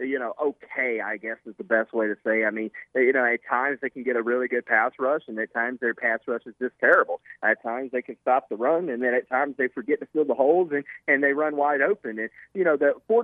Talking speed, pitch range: 280 wpm, 125-155 Hz